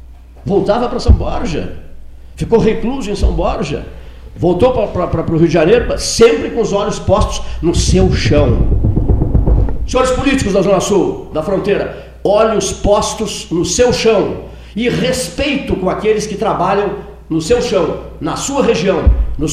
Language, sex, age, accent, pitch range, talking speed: Portuguese, male, 60-79, Brazilian, 155-215 Hz, 150 wpm